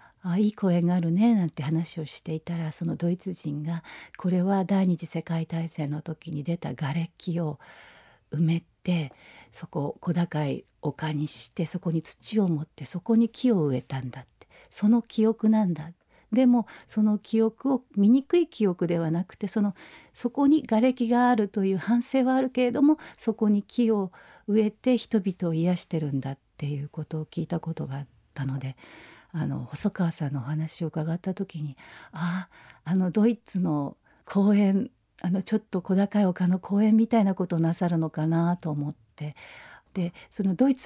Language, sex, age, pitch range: Japanese, female, 50-69, 160-215 Hz